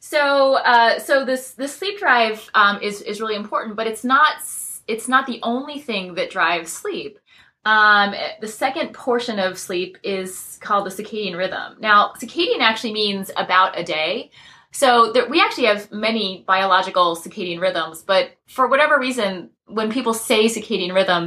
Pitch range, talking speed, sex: 185-235 Hz, 165 wpm, female